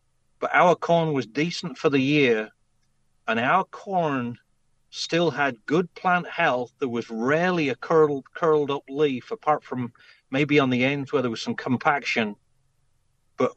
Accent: British